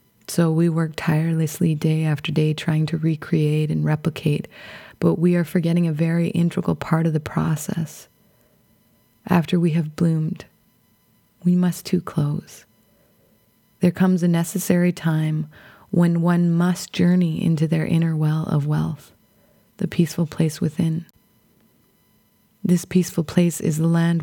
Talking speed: 140 wpm